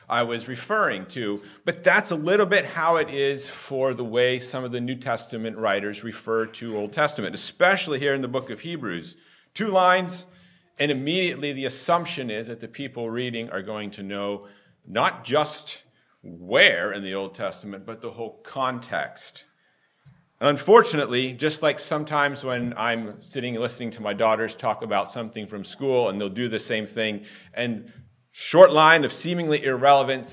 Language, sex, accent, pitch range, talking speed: English, male, American, 110-145 Hz, 170 wpm